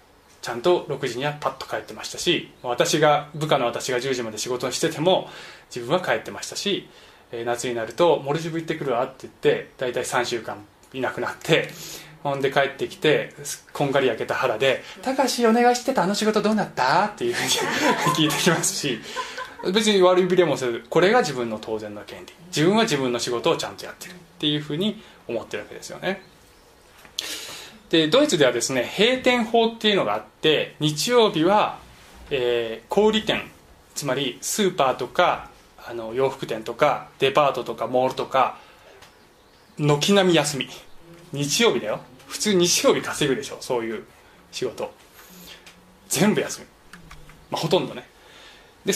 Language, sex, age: Japanese, male, 20-39